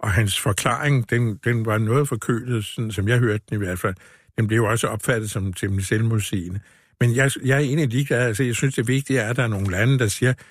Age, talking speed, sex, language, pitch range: 60-79, 240 wpm, male, Danish, 100-130 Hz